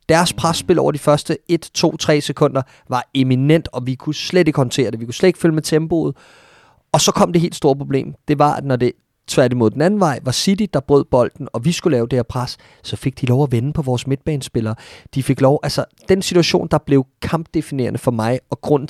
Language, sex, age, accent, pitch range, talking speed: Danish, male, 30-49, native, 130-170 Hz, 240 wpm